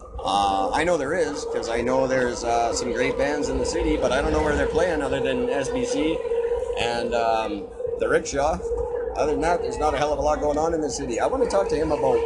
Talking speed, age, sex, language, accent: 255 wpm, 30-49, male, English, American